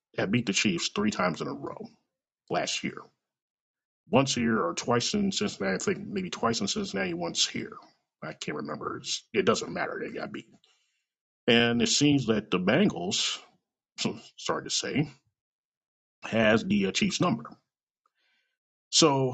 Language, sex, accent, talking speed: English, male, American, 160 wpm